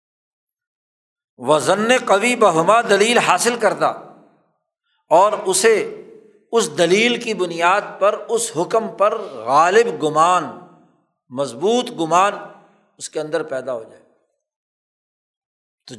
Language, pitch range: Urdu, 155-220 Hz